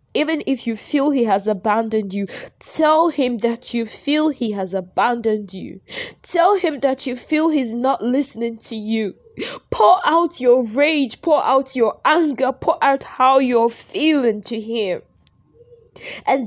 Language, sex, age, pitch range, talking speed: English, female, 20-39, 145-230 Hz, 155 wpm